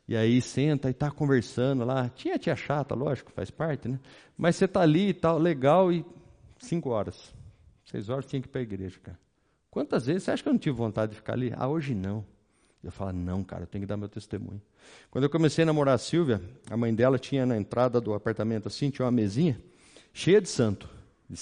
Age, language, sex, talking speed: 50-69, Portuguese, male, 225 wpm